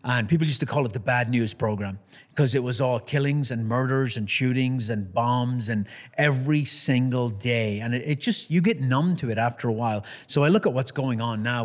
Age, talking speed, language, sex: 30-49, 230 wpm, English, male